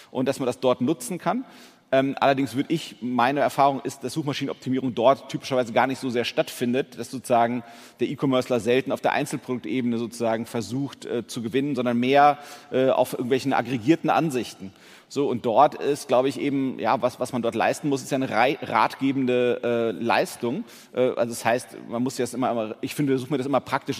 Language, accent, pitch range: German, German, 120-135 Hz